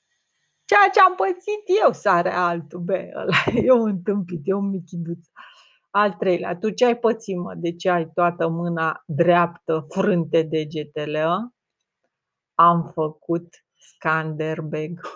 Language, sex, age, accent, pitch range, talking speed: Romanian, female, 30-49, native, 170-220 Hz, 125 wpm